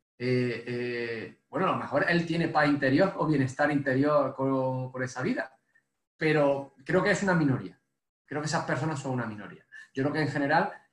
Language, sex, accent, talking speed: Spanish, male, Spanish, 190 wpm